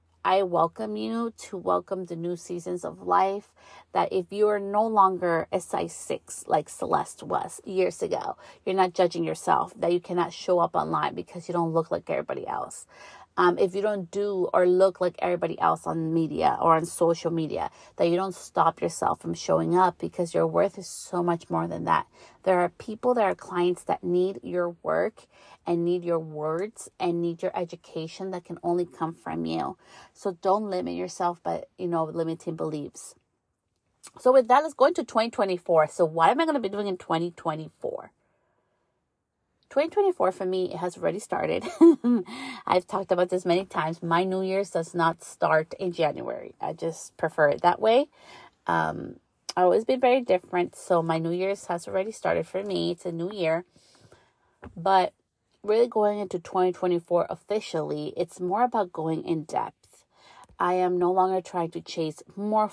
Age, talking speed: 30-49, 180 wpm